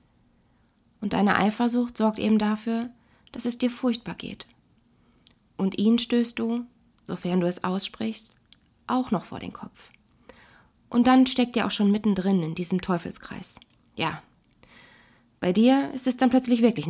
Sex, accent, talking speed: female, German, 150 wpm